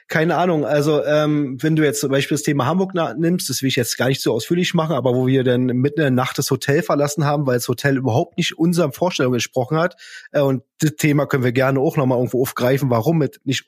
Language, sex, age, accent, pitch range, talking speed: German, male, 20-39, German, 135-165 Hz, 250 wpm